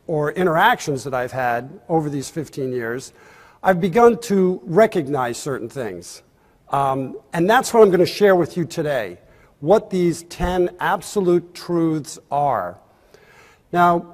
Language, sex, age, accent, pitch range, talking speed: English, male, 50-69, American, 145-195 Hz, 135 wpm